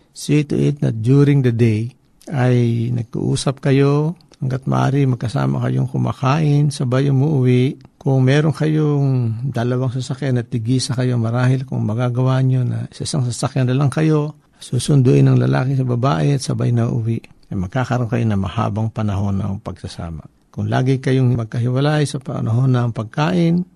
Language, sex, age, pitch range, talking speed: Filipino, male, 60-79, 115-140 Hz, 150 wpm